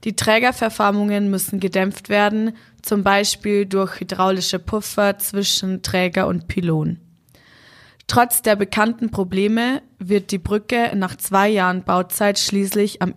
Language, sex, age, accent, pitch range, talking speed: German, female, 20-39, German, 180-215 Hz, 125 wpm